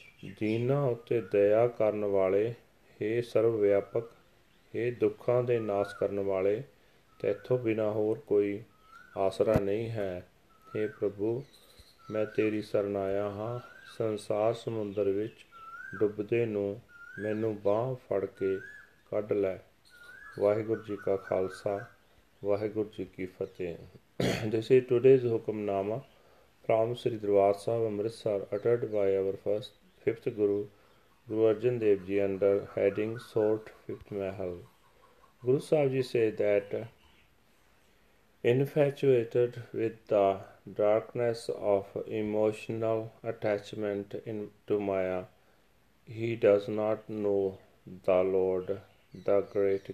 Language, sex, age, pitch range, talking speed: Punjabi, male, 40-59, 100-115 Hz, 110 wpm